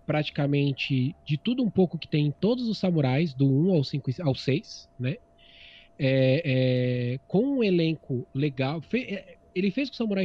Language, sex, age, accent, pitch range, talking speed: Portuguese, male, 20-39, Brazilian, 130-180 Hz, 180 wpm